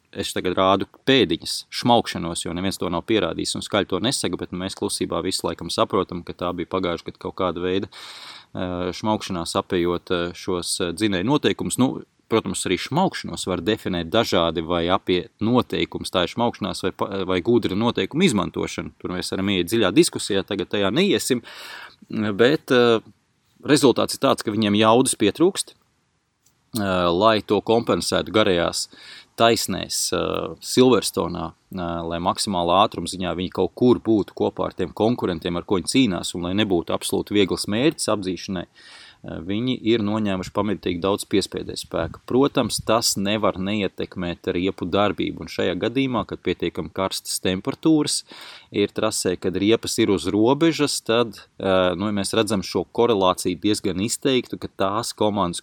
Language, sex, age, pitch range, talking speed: English, male, 30-49, 90-110 Hz, 145 wpm